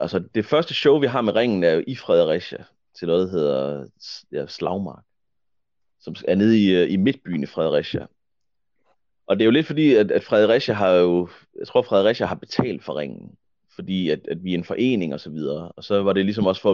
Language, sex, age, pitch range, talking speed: Danish, male, 30-49, 90-120 Hz, 220 wpm